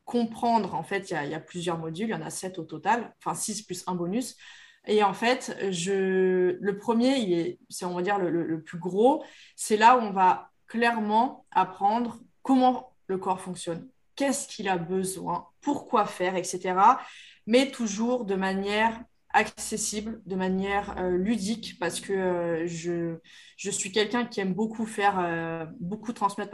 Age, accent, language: 20-39, French, French